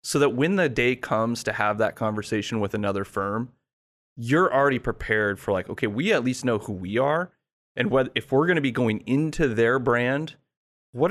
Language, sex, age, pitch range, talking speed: English, male, 30-49, 110-140 Hz, 205 wpm